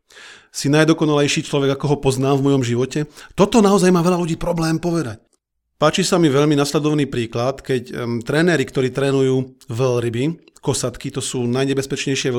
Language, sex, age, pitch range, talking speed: Slovak, male, 40-59, 130-165 Hz, 150 wpm